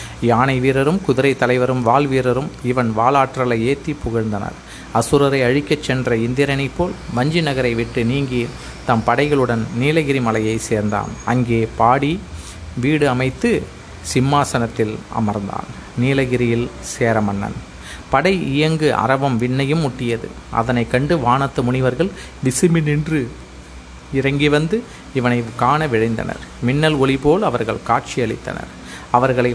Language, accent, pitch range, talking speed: Tamil, native, 110-140 Hz, 110 wpm